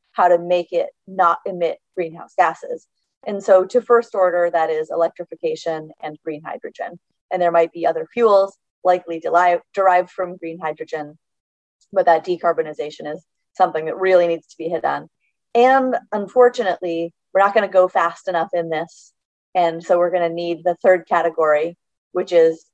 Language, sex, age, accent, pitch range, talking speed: English, female, 30-49, American, 165-195 Hz, 170 wpm